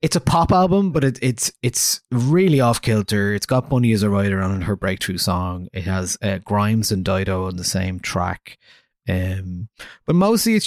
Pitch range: 95-120 Hz